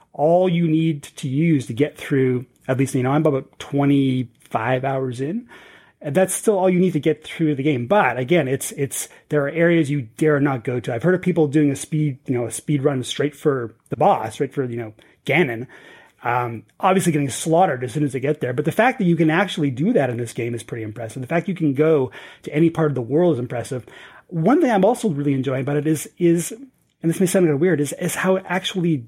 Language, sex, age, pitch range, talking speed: English, male, 30-49, 130-170 Hz, 245 wpm